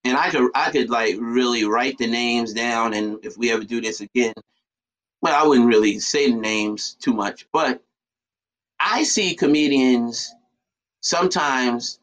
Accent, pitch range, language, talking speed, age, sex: American, 110-140 Hz, English, 160 wpm, 30-49, male